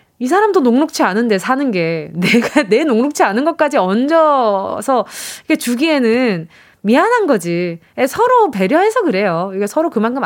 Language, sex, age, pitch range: Korean, female, 20-39, 220-325 Hz